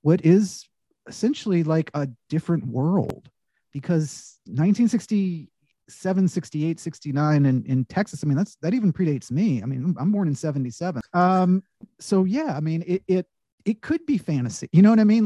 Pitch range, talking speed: 150-195 Hz, 170 wpm